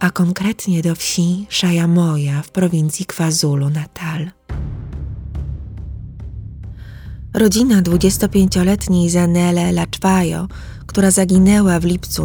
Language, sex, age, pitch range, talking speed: Polish, female, 20-39, 150-185 Hz, 80 wpm